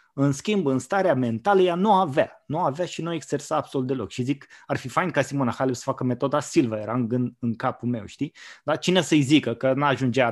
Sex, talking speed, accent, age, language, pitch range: male, 240 wpm, native, 20-39, Romanian, 125-150 Hz